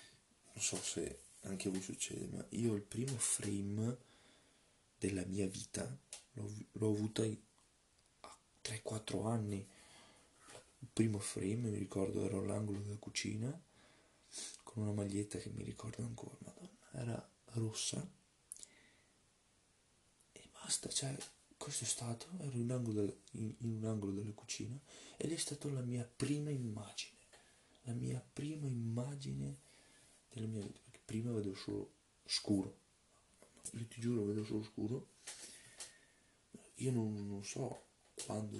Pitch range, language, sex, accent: 100-120 Hz, Italian, male, native